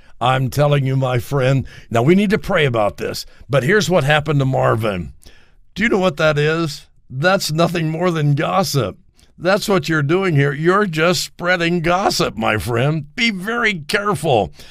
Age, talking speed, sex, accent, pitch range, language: 60-79, 170 wpm, male, American, 125-180 Hz, English